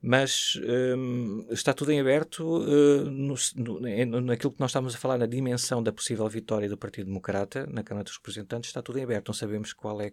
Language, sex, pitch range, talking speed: Portuguese, male, 100-120 Hz, 210 wpm